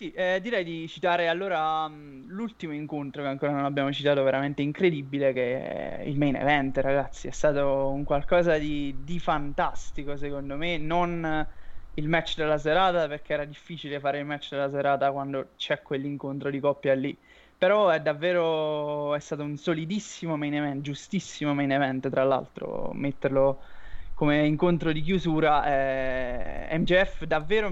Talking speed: 150 wpm